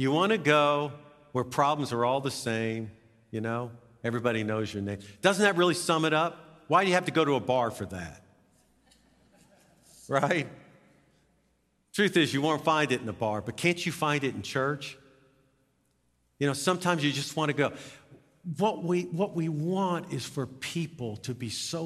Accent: American